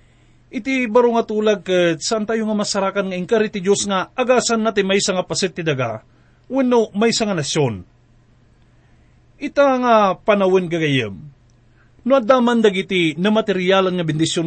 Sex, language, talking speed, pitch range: male, English, 135 wpm, 145-230 Hz